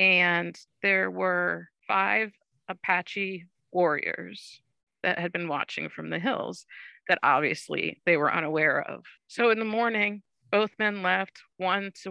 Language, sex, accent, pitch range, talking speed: English, female, American, 170-195 Hz, 140 wpm